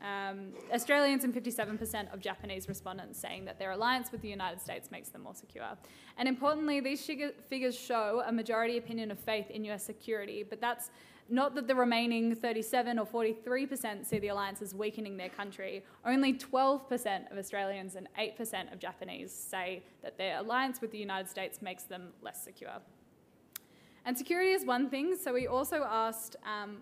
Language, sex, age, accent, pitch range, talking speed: English, female, 10-29, Australian, 205-255 Hz, 175 wpm